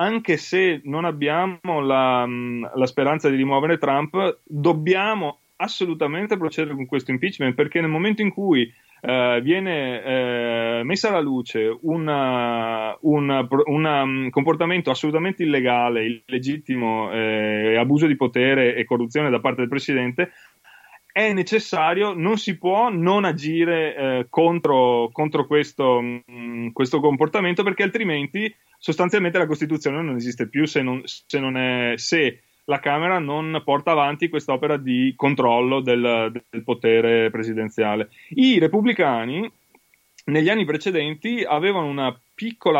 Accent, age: native, 30-49